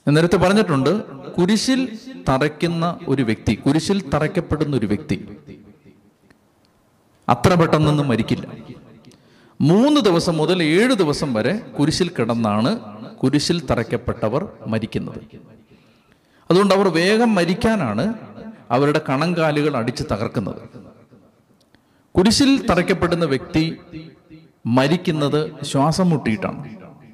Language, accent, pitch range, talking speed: Malayalam, native, 130-190 Hz, 85 wpm